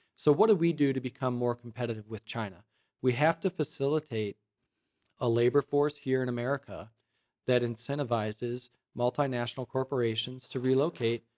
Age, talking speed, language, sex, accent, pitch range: 40-59, 140 wpm, English, male, American, 125-140 Hz